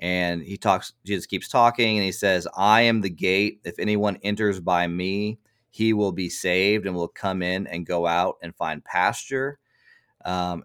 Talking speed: 185 wpm